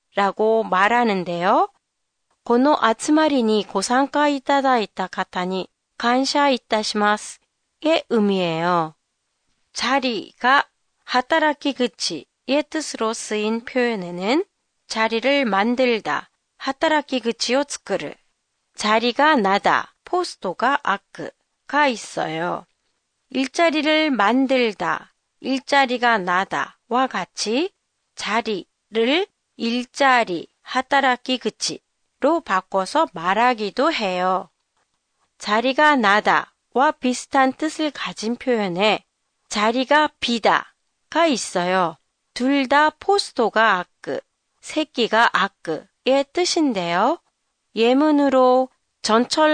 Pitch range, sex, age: 210-285 Hz, female, 40-59